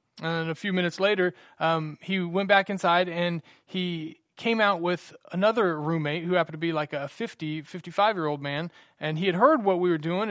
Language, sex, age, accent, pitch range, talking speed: English, male, 30-49, American, 145-175 Hz, 210 wpm